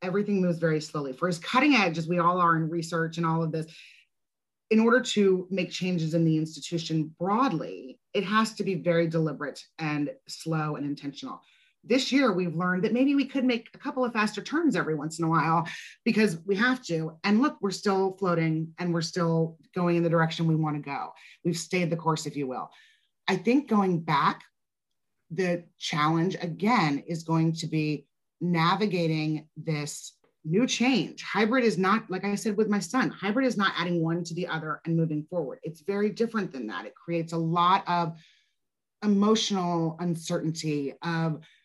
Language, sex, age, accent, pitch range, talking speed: English, female, 30-49, American, 160-195 Hz, 190 wpm